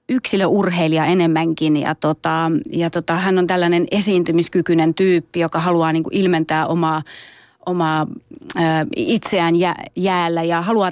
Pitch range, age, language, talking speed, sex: 165-200 Hz, 30-49, Finnish, 120 wpm, female